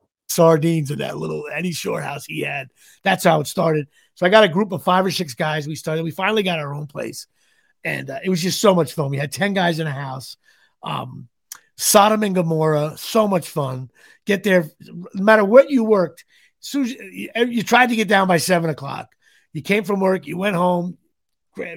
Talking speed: 210 wpm